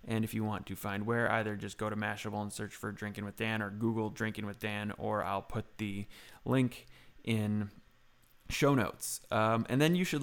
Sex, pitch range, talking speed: male, 105-125 Hz, 210 wpm